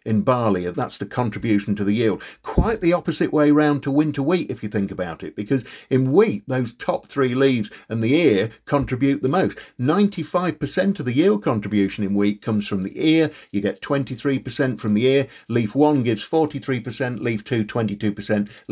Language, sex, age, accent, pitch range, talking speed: English, male, 50-69, British, 105-145 Hz, 190 wpm